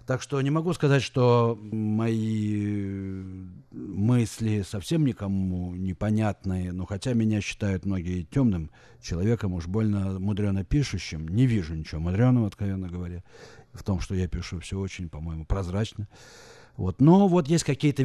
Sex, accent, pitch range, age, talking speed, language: male, native, 90-120 Hz, 50-69, 140 wpm, Russian